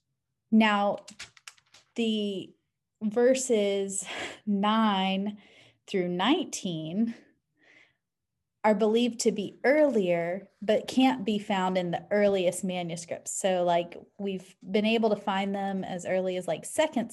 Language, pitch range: English, 185-235 Hz